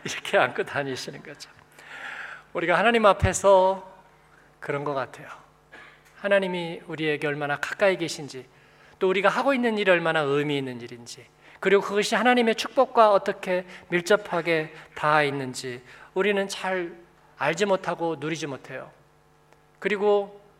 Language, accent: Korean, native